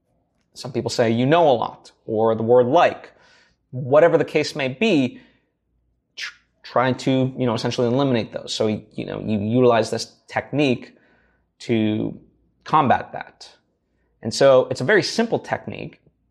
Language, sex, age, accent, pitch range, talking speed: English, male, 20-39, American, 120-165 Hz, 150 wpm